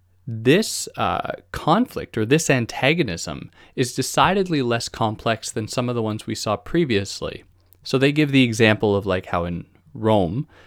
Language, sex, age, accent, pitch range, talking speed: English, male, 20-39, American, 95-130 Hz, 155 wpm